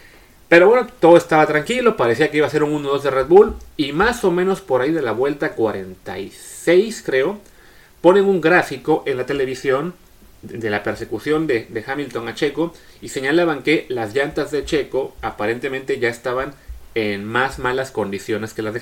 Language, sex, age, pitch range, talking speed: Spanish, male, 30-49, 125-175 Hz, 180 wpm